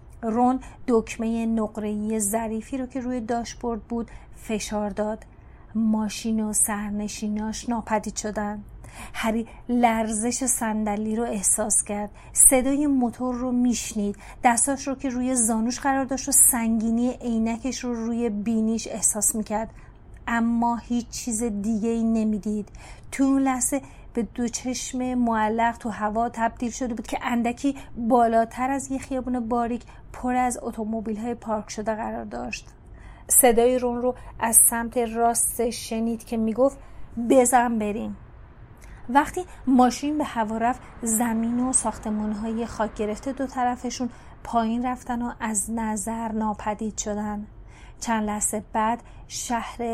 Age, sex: 30-49, female